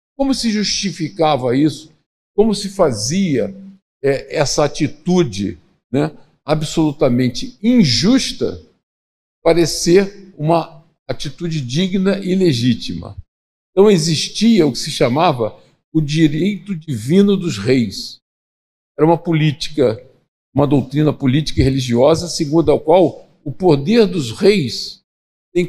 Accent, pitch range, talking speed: Brazilian, 140-180 Hz, 105 wpm